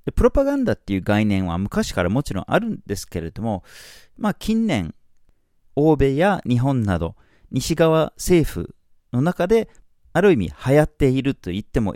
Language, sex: Japanese, male